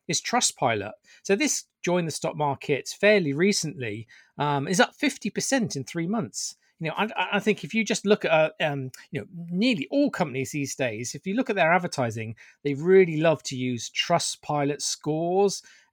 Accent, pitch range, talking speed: British, 130-170 Hz, 190 wpm